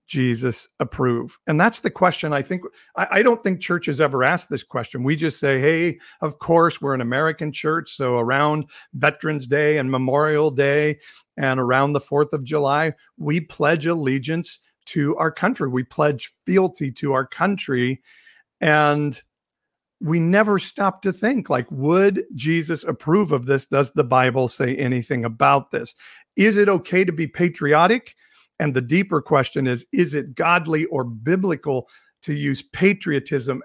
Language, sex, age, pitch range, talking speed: English, male, 50-69, 130-165 Hz, 160 wpm